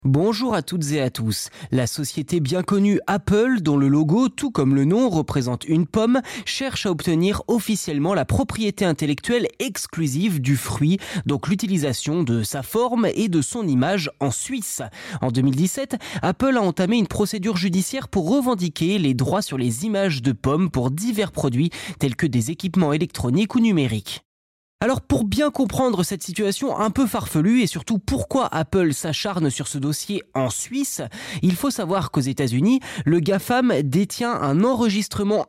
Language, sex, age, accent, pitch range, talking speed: French, male, 20-39, French, 145-210 Hz, 165 wpm